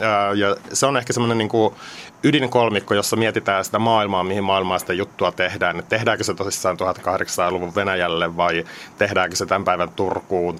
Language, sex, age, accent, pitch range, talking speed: Finnish, male, 30-49, native, 100-120 Hz, 160 wpm